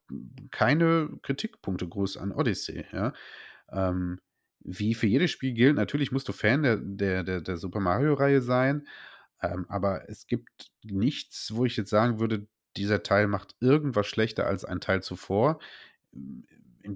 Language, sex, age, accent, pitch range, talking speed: German, male, 30-49, German, 95-120 Hz, 150 wpm